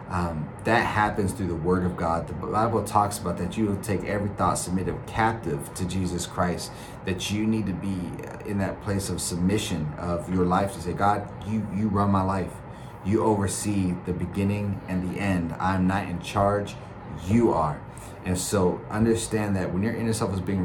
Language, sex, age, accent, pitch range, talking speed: English, male, 30-49, American, 90-105 Hz, 190 wpm